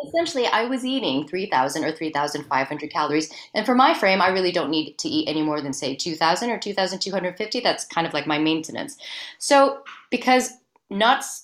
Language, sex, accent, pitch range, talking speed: English, female, American, 155-225 Hz, 180 wpm